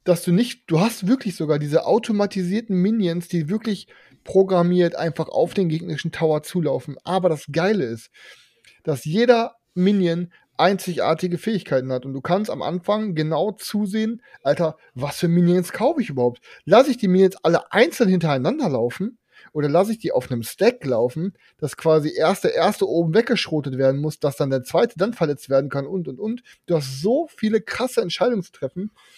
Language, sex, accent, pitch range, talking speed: German, male, German, 140-195 Hz, 175 wpm